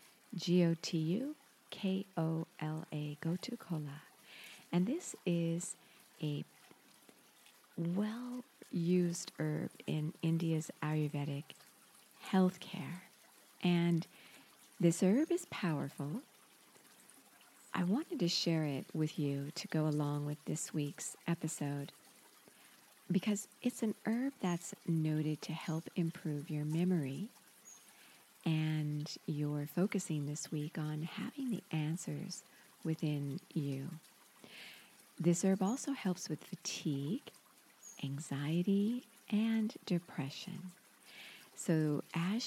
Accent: American